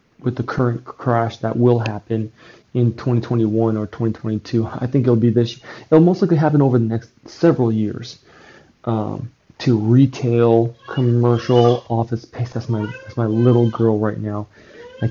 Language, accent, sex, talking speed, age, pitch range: English, American, male, 160 wpm, 30-49, 115-125 Hz